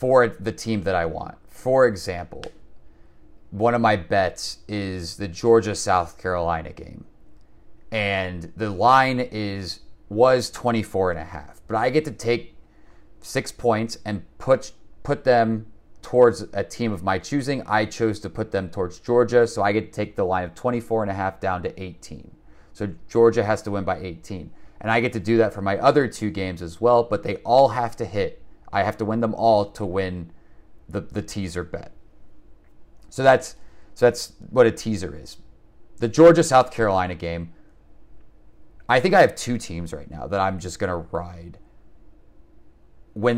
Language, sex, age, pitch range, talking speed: English, male, 30-49, 95-115 Hz, 185 wpm